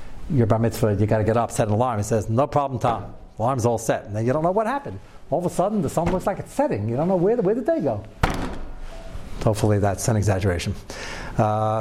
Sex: male